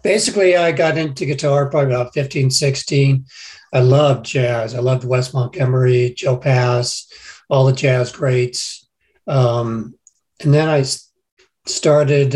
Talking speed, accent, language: 130 wpm, American, English